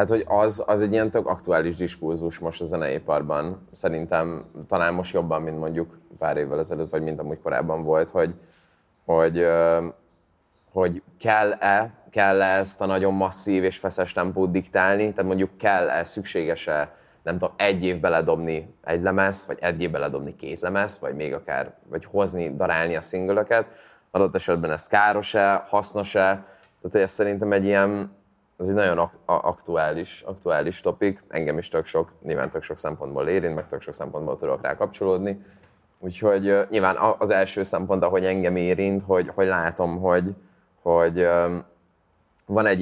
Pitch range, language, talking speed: 85-100 Hz, Hungarian, 155 wpm